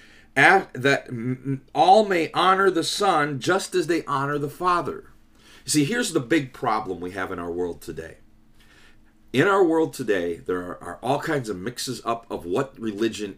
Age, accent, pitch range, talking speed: 40-59, American, 110-175 Hz, 175 wpm